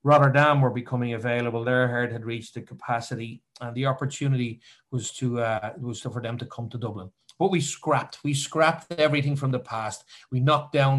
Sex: male